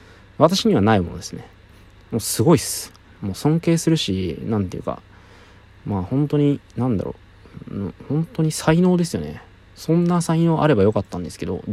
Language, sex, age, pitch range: Japanese, male, 20-39, 95-145 Hz